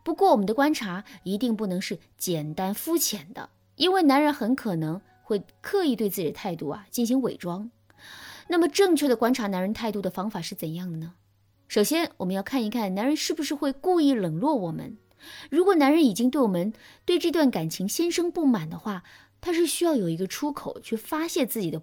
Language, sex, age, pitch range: Chinese, female, 20-39, 185-290 Hz